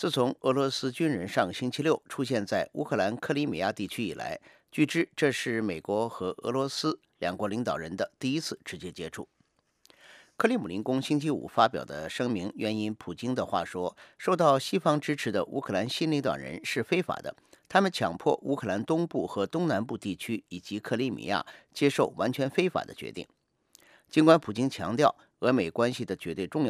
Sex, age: male, 50-69